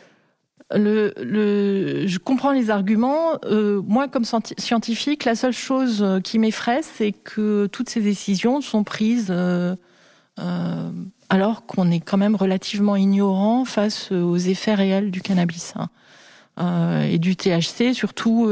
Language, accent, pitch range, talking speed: French, French, 180-215 Hz, 135 wpm